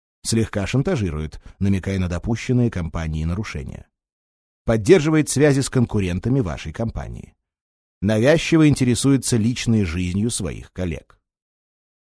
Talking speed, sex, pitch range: 95 wpm, male, 85-125 Hz